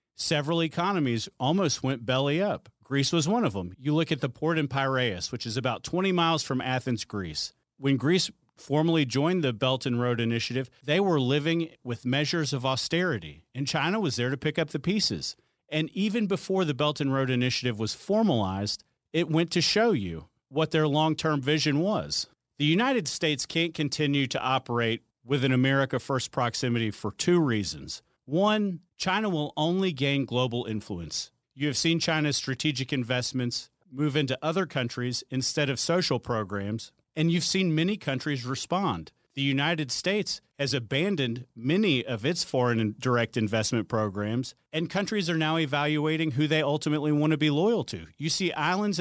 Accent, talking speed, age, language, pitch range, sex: American, 170 wpm, 40-59, English, 125-165 Hz, male